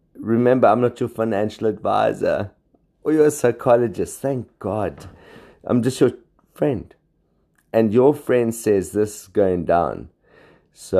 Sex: male